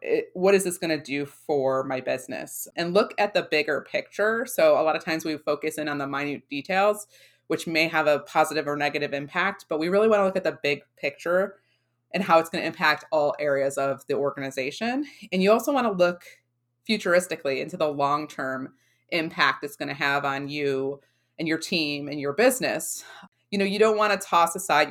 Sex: female